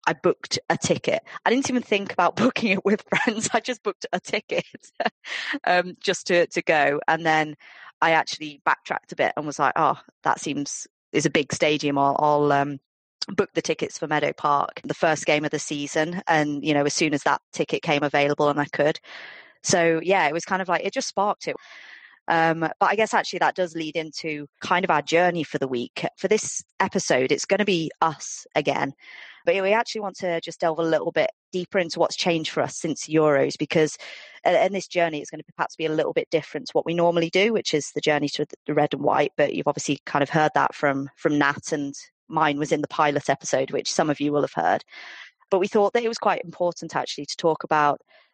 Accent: British